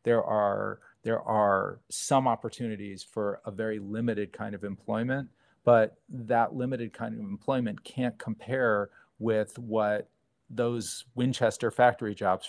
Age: 40-59